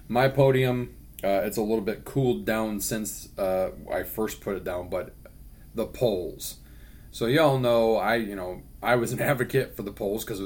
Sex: male